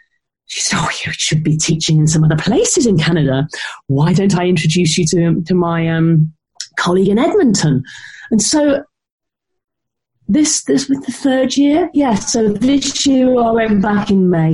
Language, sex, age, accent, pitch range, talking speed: English, female, 30-49, British, 155-200 Hz, 180 wpm